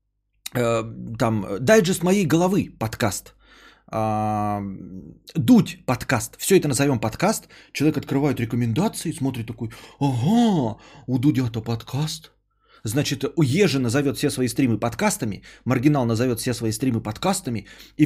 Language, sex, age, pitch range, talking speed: Bulgarian, male, 30-49, 120-180 Hz, 120 wpm